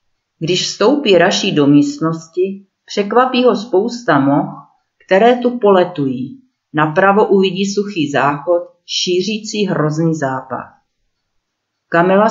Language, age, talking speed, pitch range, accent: Czech, 40-59, 95 wpm, 150-200 Hz, native